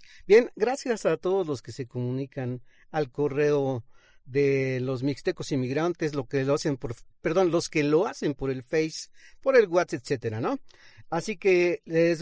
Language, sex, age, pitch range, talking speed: Spanish, male, 40-59, 140-195 Hz, 170 wpm